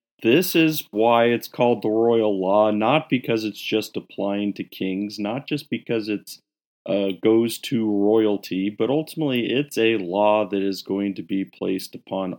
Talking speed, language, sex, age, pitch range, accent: 165 wpm, English, male, 40-59, 100-120 Hz, American